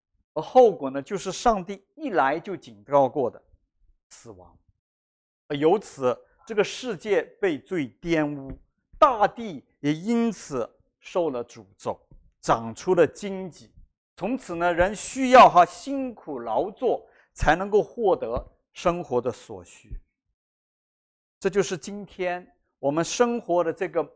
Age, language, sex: 50-69, Chinese, male